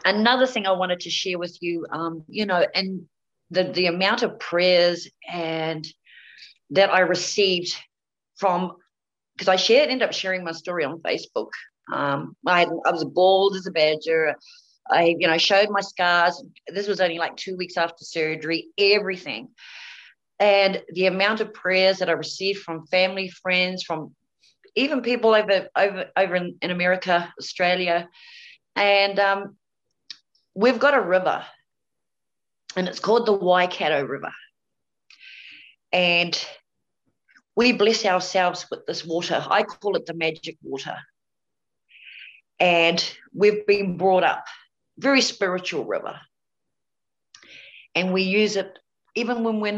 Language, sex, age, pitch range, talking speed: English, female, 40-59, 170-200 Hz, 140 wpm